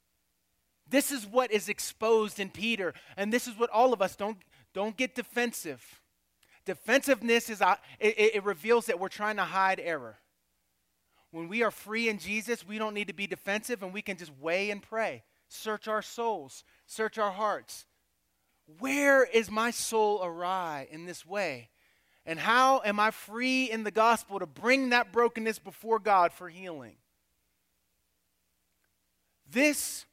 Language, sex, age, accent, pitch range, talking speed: English, male, 30-49, American, 190-255 Hz, 155 wpm